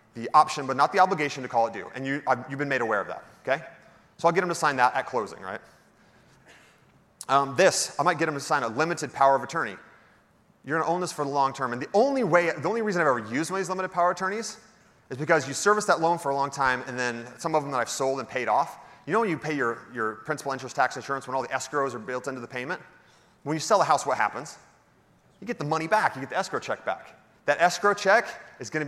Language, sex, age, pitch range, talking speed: English, male, 30-49, 125-155 Hz, 265 wpm